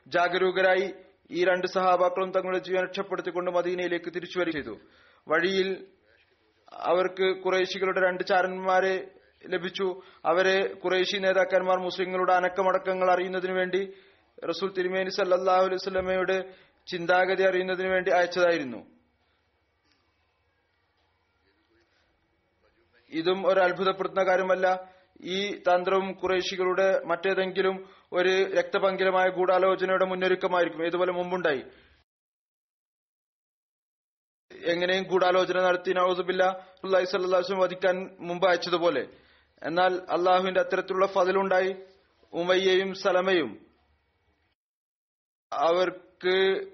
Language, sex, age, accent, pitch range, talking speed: Malayalam, male, 30-49, native, 180-190 Hz, 70 wpm